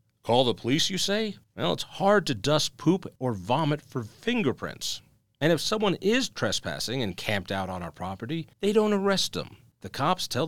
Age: 40-59